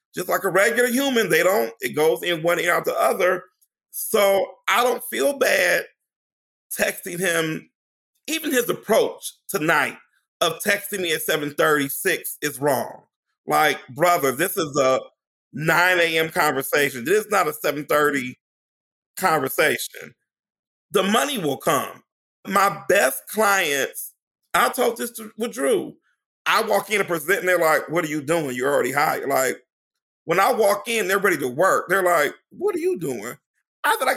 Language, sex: English, male